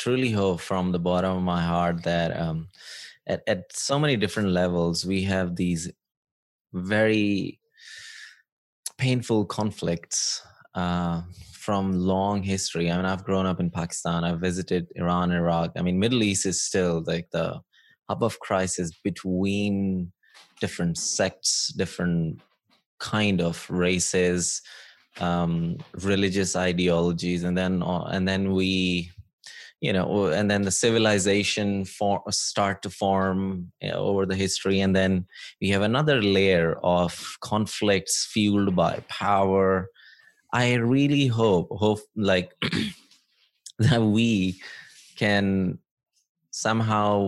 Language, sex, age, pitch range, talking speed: English, male, 20-39, 90-105 Hz, 125 wpm